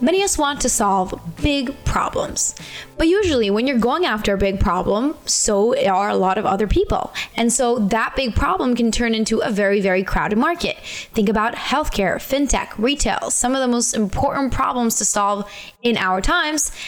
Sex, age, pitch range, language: female, 10-29, 200-265 Hz, English